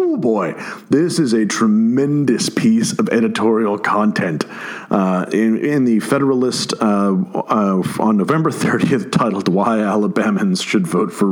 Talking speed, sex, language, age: 135 wpm, male, English, 40-59